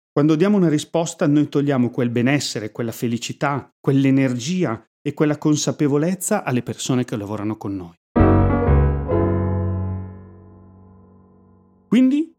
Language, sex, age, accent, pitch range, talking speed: Italian, male, 30-49, native, 115-160 Hz, 100 wpm